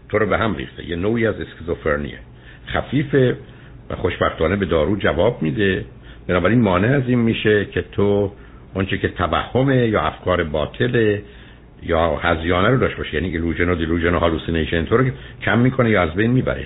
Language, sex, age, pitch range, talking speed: Persian, male, 60-79, 85-120 Hz, 160 wpm